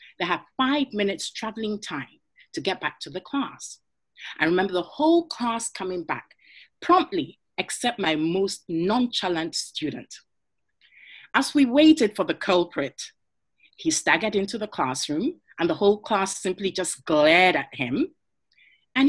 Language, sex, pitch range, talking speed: English, female, 185-300 Hz, 145 wpm